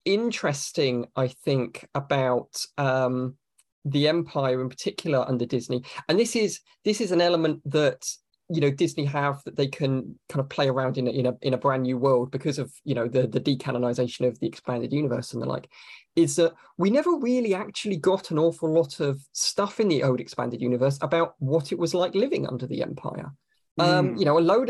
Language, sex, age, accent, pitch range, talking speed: English, male, 20-39, British, 130-175 Hz, 200 wpm